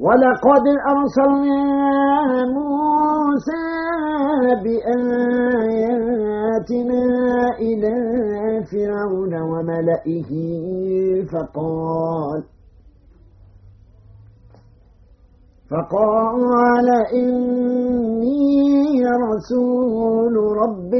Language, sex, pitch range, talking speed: Arabic, male, 160-250 Hz, 35 wpm